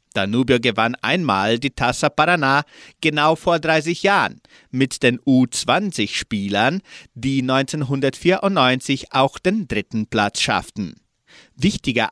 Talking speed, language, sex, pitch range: 105 wpm, German, male, 115-160 Hz